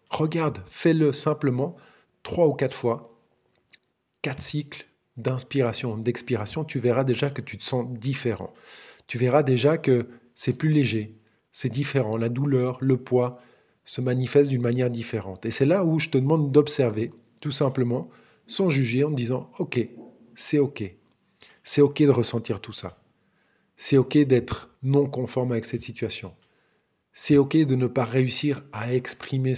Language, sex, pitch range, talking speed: French, male, 115-145 Hz, 160 wpm